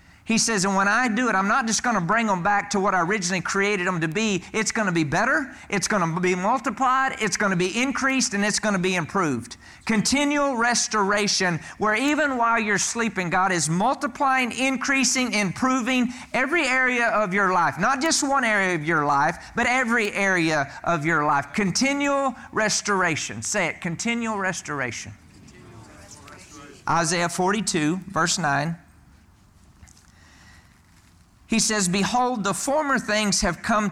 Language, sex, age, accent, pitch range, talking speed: English, male, 40-59, American, 140-225 Hz, 165 wpm